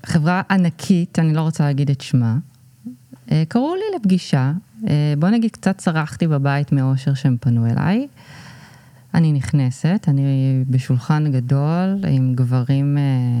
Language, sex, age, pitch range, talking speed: Hebrew, female, 20-39, 135-190 Hz, 120 wpm